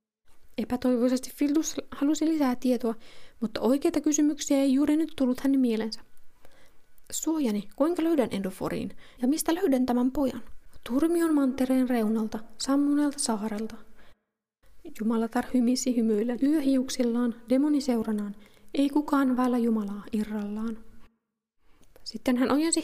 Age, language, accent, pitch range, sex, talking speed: 20-39, Finnish, native, 230-285 Hz, female, 110 wpm